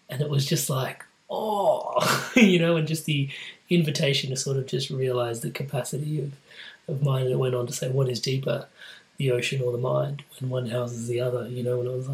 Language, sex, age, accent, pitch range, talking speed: English, male, 20-39, Australian, 125-160 Hz, 215 wpm